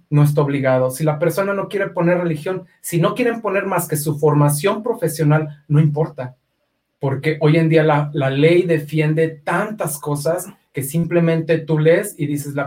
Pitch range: 145-175 Hz